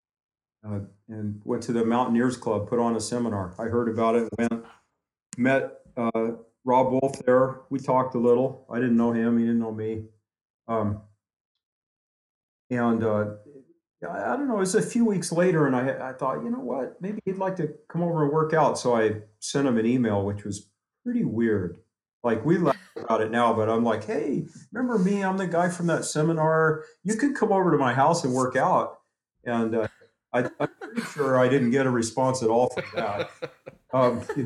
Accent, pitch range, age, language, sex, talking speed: American, 115-155 Hz, 40-59, English, male, 200 wpm